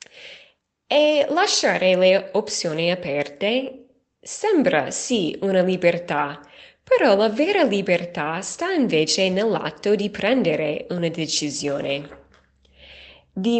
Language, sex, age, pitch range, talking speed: Italian, female, 20-39, 170-250 Hz, 95 wpm